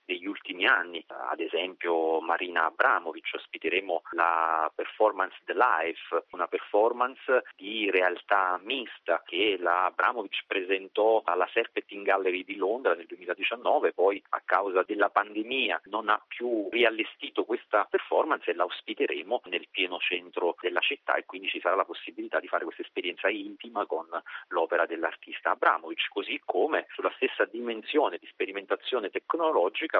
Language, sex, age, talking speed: Italian, male, 40-59, 140 wpm